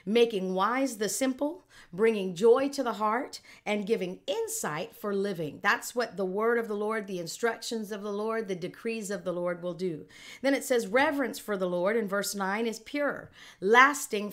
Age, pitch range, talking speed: 50-69, 180-240 Hz, 195 wpm